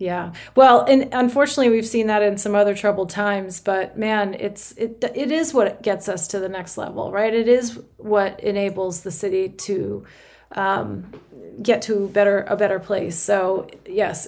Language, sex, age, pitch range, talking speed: English, female, 30-49, 200-230 Hz, 175 wpm